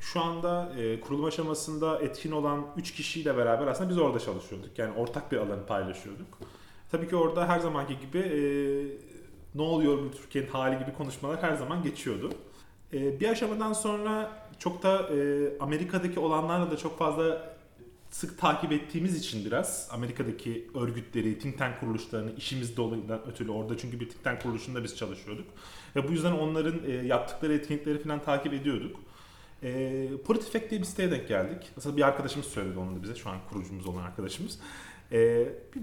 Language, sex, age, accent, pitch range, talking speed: Turkish, male, 30-49, native, 120-170 Hz, 165 wpm